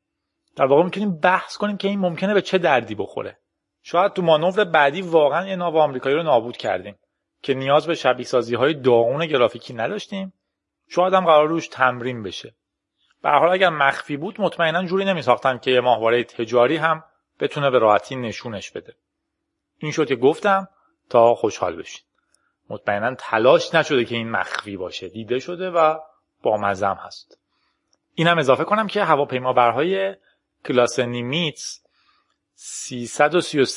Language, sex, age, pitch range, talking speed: Persian, male, 30-49, 120-170 Hz, 145 wpm